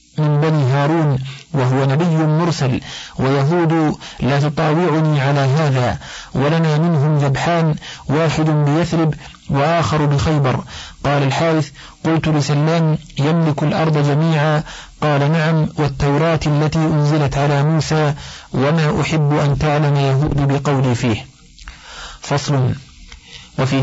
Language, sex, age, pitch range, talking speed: Arabic, male, 50-69, 140-160 Hz, 105 wpm